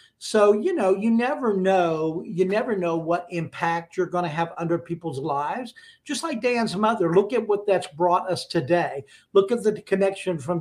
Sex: male